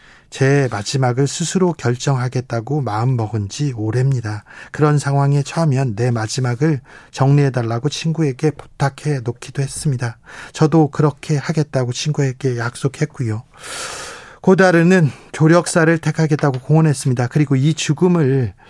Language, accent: Korean, native